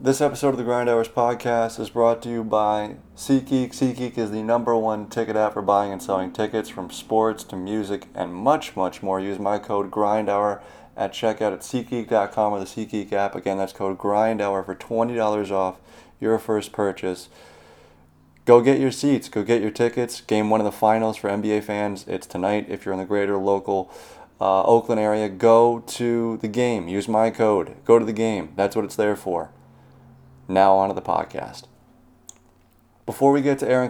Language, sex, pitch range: English, male, 100-120 Hz